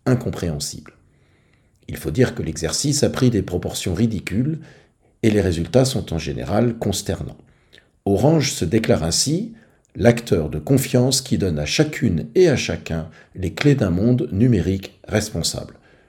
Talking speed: 140 wpm